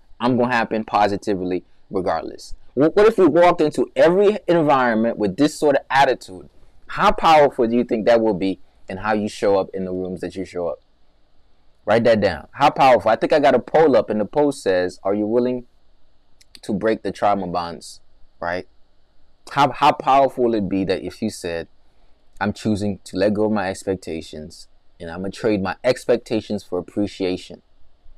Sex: male